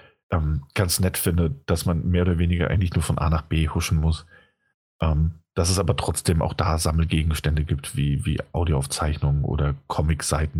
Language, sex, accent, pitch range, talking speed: German, male, German, 80-90 Hz, 165 wpm